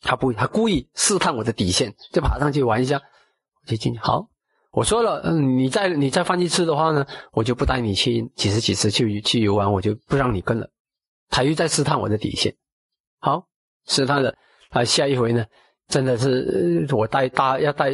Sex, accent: male, native